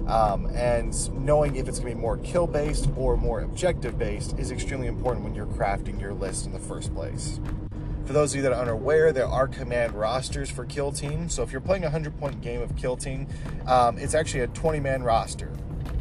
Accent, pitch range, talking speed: American, 120-145 Hz, 205 wpm